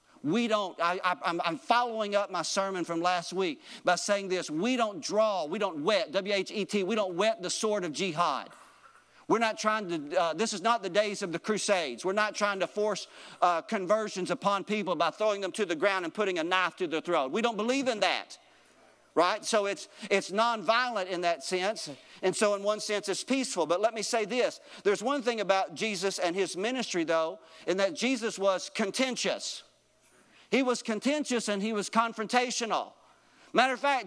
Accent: American